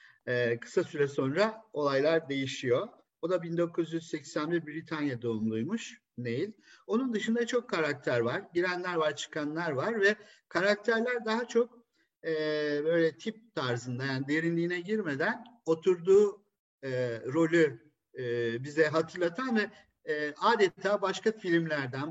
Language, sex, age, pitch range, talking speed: Turkish, male, 50-69, 135-185 Hz, 115 wpm